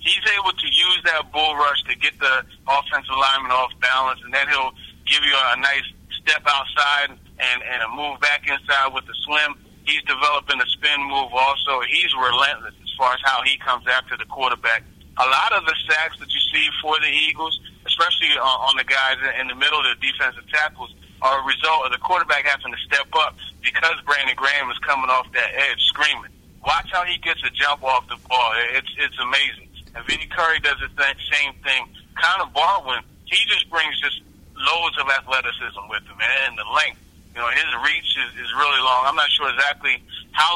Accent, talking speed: American, 200 wpm